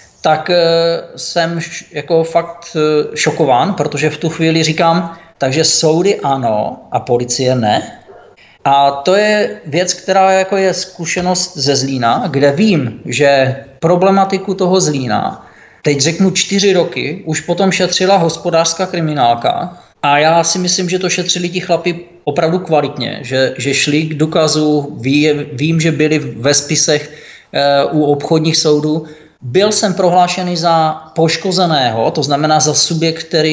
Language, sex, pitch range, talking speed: Czech, male, 145-175 Hz, 135 wpm